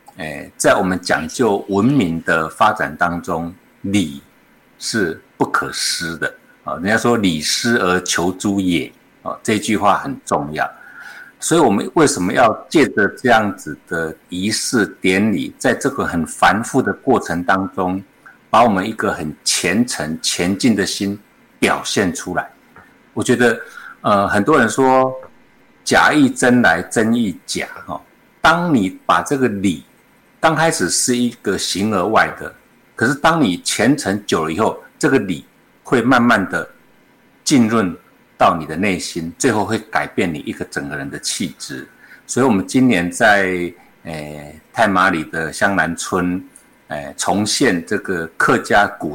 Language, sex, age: Chinese, male, 50-69